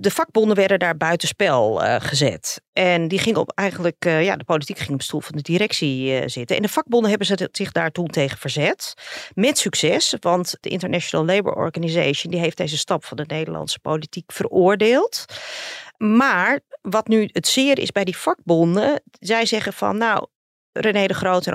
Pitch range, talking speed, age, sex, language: 175-240 Hz, 190 wpm, 40-59, female, Dutch